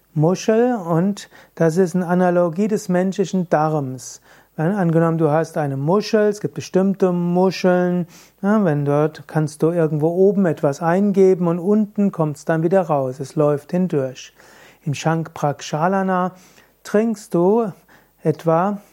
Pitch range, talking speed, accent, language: 155-195 Hz, 140 wpm, German, German